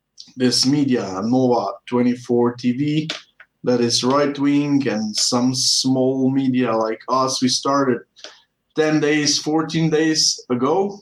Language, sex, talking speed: English, male, 115 wpm